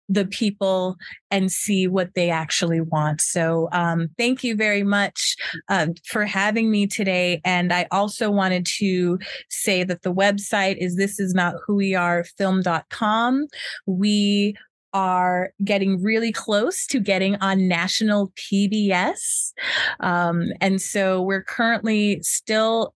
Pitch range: 180-215 Hz